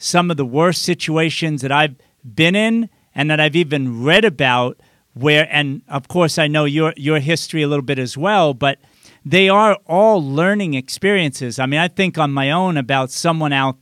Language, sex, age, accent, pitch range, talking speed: English, male, 50-69, American, 140-180 Hz, 195 wpm